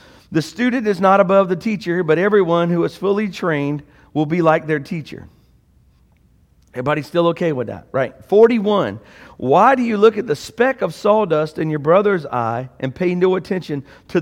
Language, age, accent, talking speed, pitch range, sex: English, 50-69, American, 180 wpm, 145-205 Hz, male